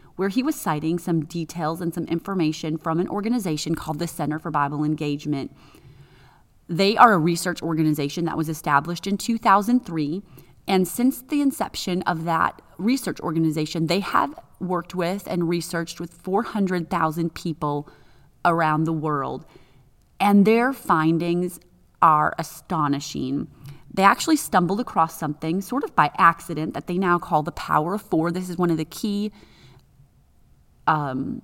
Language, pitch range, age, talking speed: English, 155-195 Hz, 30-49, 145 wpm